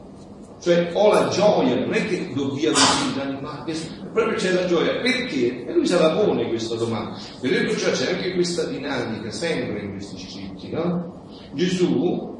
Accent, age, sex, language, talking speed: native, 40-59, male, Italian, 175 wpm